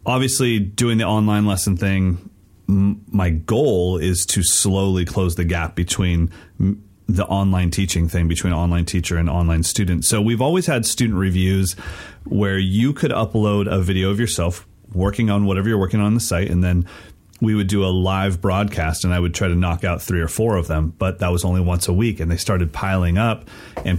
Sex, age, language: male, 30-49, English